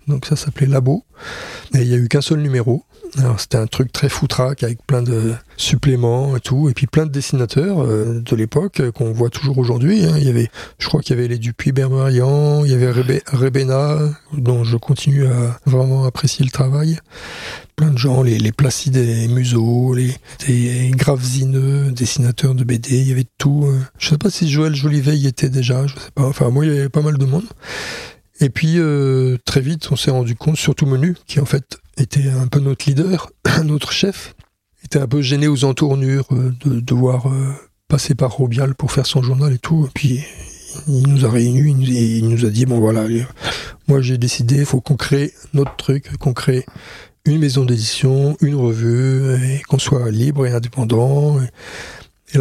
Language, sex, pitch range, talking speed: French, male, 125-145 Hz, 205 wpm